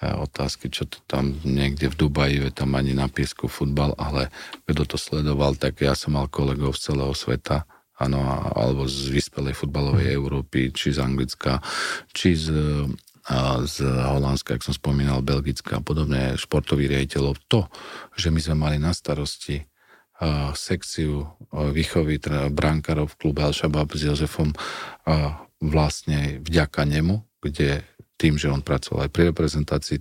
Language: Slovak